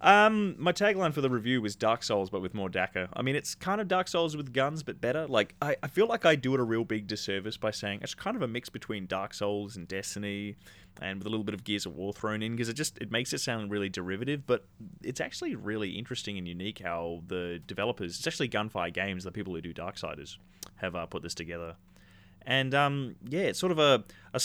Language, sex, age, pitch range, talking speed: English, male, 20-39, 95-120 Hz, 245 wpm